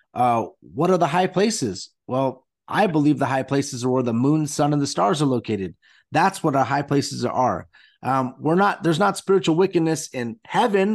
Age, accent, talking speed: 30-49, American, 205 wpm